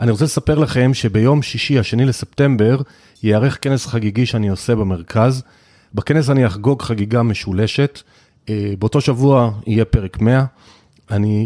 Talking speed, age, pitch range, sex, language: 130 wpm, 30-49, 105-135 Hz, male, Hebrew